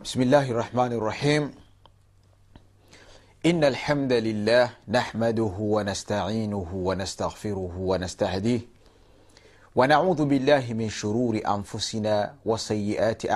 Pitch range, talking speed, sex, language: 90-115 Hz, 75 wpm, male, Swahili